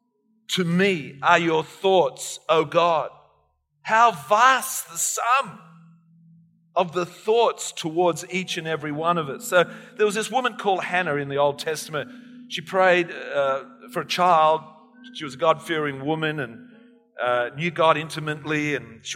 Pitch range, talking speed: 160-220 Hz, 160 wpm